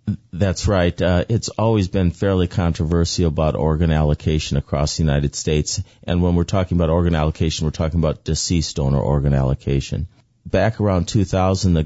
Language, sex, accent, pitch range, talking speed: English, male, American, 80-95 Hz, 165 wpm